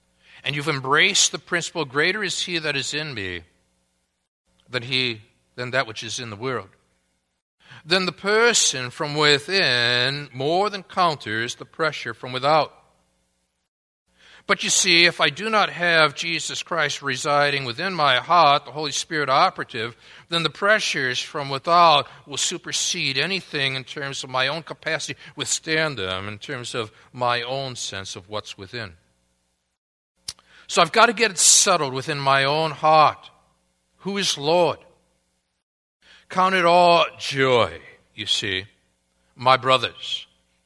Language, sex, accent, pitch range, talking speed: English, male, American, 120-170 Hz, 145 wpm